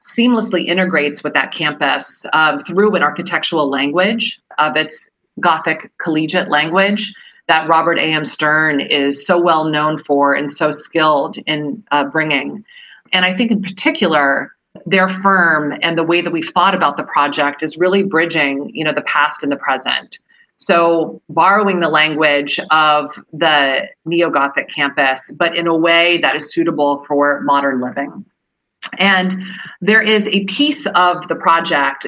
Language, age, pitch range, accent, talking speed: English, 40-59, 150-185 Hz, American, 155 wpm